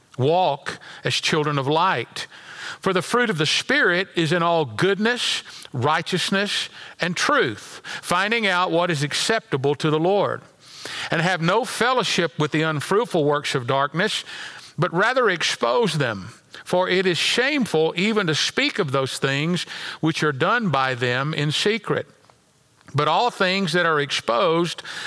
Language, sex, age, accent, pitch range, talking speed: English, male, 50-69, American, 155-200 Hz, 150 wpm